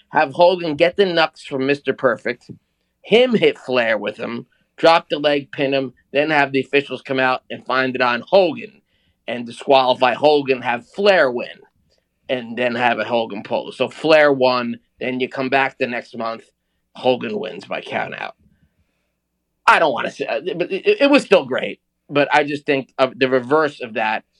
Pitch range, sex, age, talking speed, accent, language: 120-155 Hz, male, 30-49, 185 wpm, American, English